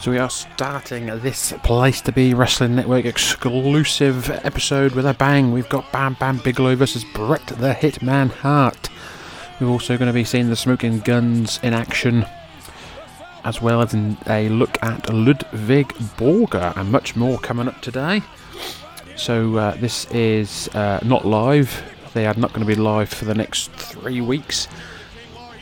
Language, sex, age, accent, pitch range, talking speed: English, male, 30-49, British, 105-130 Hz, 160 wpm